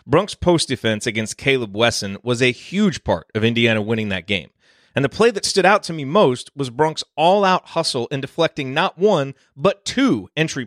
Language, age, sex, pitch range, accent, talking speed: English, 30-49, male, 110-155 Hz, American, 190 wpm